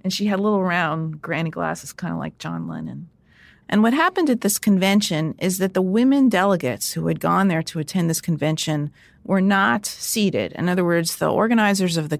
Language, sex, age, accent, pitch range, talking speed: English, female, 30-49, American, 150-190 Hz, 205 wpm